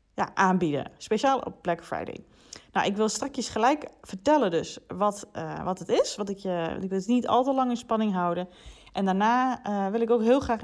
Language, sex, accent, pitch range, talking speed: Dutch, female, Dutch, 175-240 Hz, 220 wpm